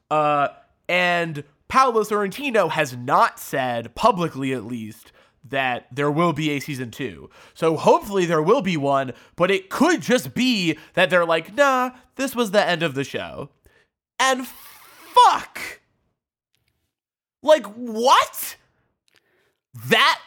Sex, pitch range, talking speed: male, 165-235 Hz, 130 wpm